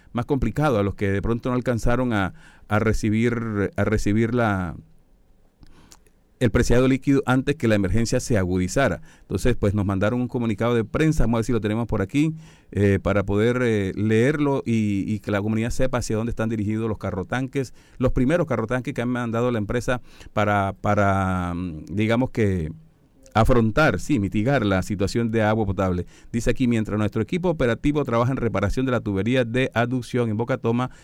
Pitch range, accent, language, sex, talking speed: 105-125 Hz, Venezuelan, Spanish, male, 180 wpm